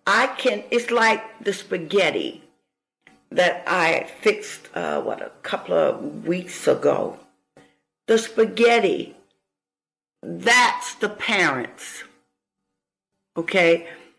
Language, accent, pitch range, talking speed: English, American, 190-260 Hz, 95 wpm